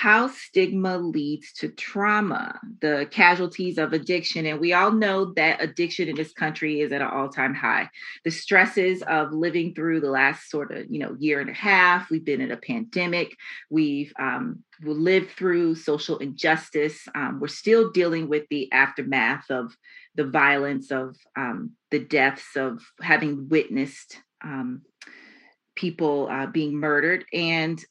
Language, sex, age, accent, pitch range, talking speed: English, female, 30-49, American, 160-205 Hz, 155 wpm